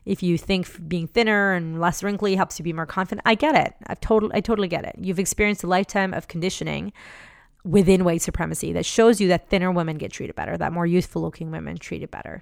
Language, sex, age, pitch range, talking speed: English, female, 30-49, 170-200 Hz, 225 wpm